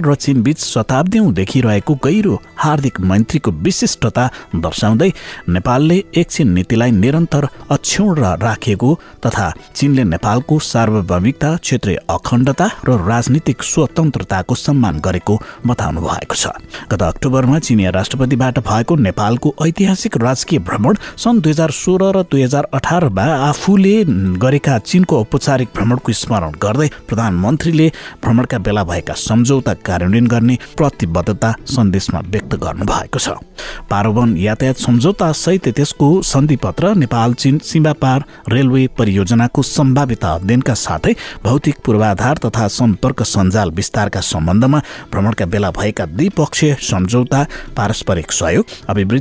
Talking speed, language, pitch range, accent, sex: 100 wpm, English, 105-150 Hz, Indian, male